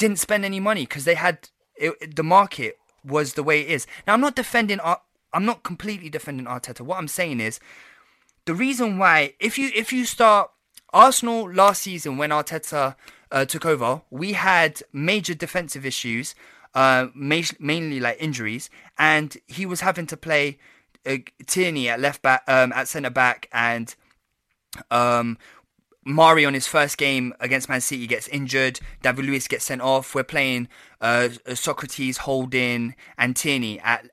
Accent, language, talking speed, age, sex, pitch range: British, English, 170 wpm, 20-39, male, 130-180 Hz